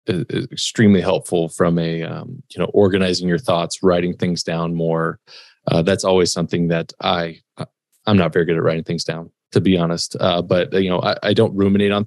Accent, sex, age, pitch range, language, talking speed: American, male, 20-39, 85-105 Hz, English, 200 wpm